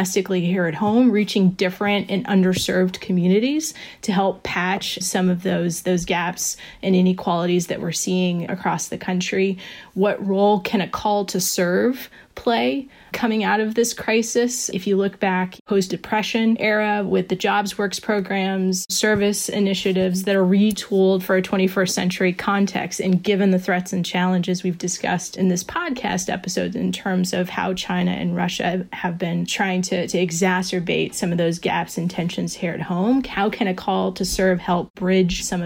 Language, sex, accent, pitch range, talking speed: English, female, American, 180-200 Hz, 170 wpm